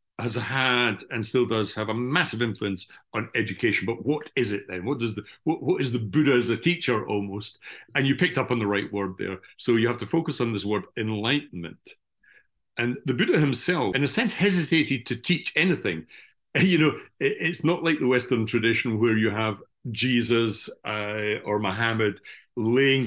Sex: male